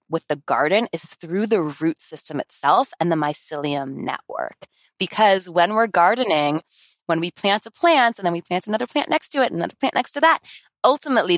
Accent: American